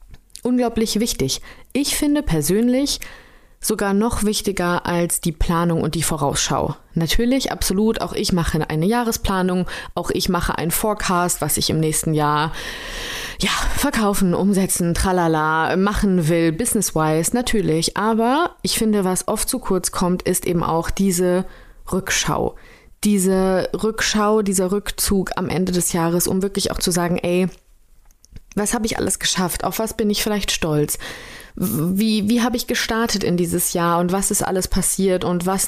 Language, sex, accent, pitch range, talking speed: German, female, German, 170-210 Hz, 155 wpm